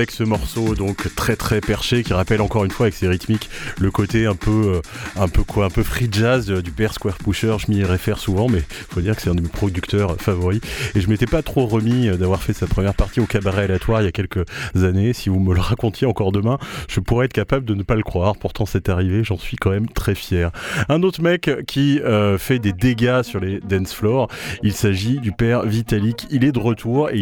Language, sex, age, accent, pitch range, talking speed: French, male, 30-49, French, 100-120 Hz, 240 wpm